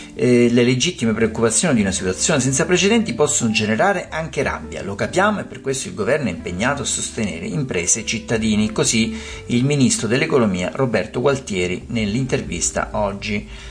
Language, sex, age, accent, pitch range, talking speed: Italian, male, 50-69, native, 110-155 Hz, 155 wpm